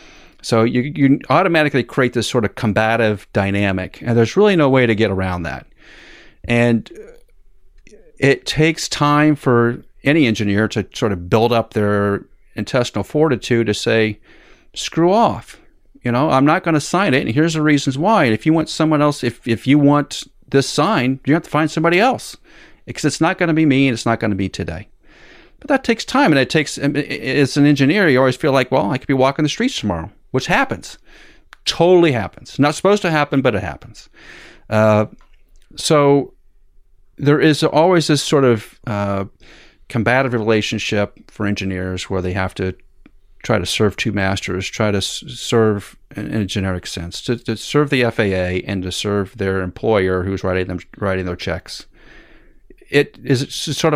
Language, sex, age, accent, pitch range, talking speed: English, male, 40-59, American, 100-145 Hz, 180 wpm